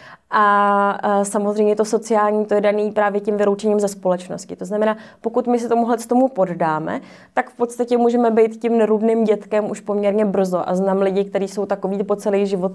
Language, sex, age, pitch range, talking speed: Czech, female, 20-39, 190-220 Hz, 190 wpm